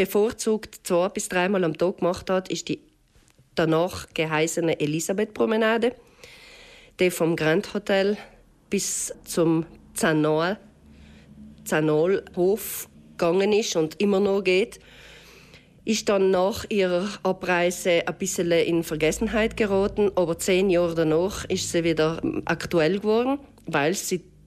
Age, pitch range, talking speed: 40-59, 165-205 Hz, 120 wpm